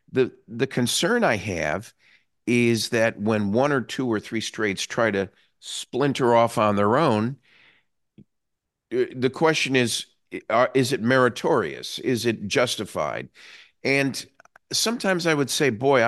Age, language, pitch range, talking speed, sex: 50-69, English, 105-135 Hz, 135 wpm, male